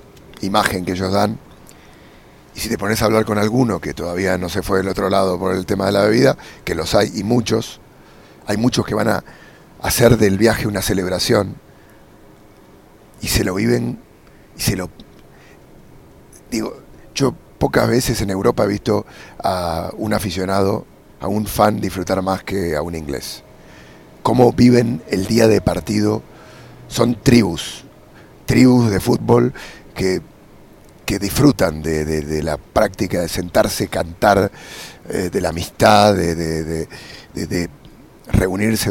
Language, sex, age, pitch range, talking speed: English, male, 40-59, 95-115 Hz, 155 wpm